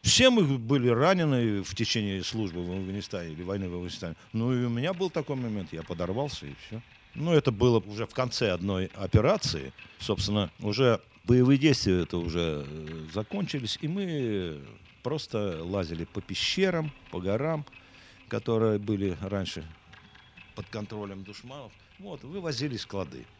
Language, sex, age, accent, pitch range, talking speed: Russian, male, 50-69, native, 95-130 Hz, 140 wpm